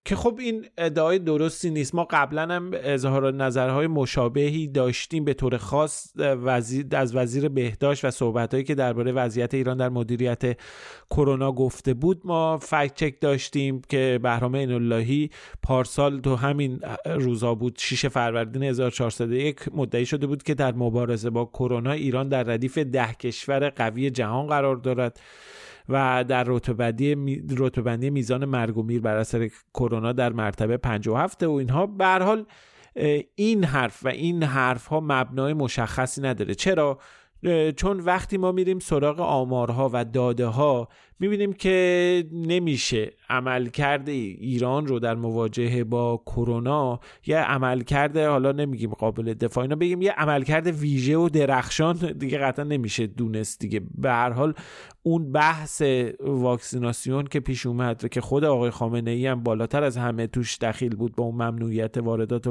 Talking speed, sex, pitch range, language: 145 wpm, male, 120-150 Hz, Persian